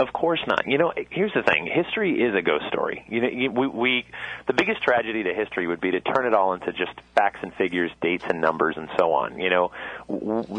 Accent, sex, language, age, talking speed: American, male, English, 30-49, 240 wpm